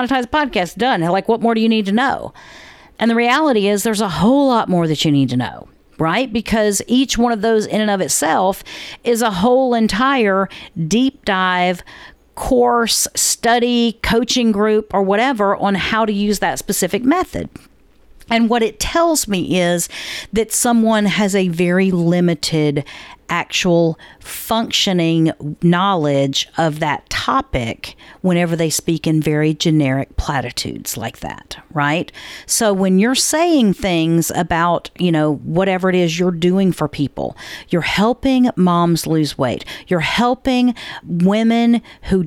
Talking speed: 150 wpm